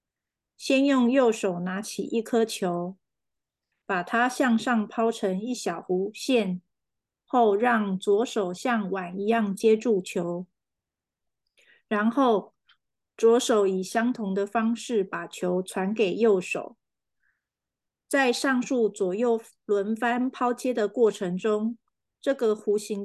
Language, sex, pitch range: Chinese, female, 195-240 Hz